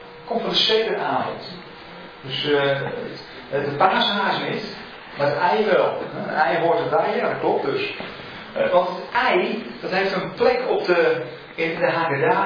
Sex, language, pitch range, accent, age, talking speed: male, Dutch, 140-225 Hz, Dutch, 40-59, 160 wpm